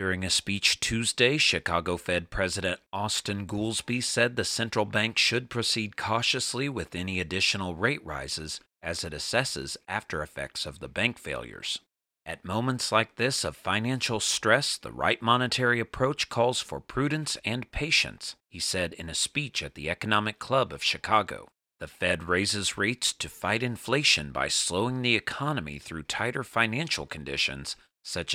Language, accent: English, American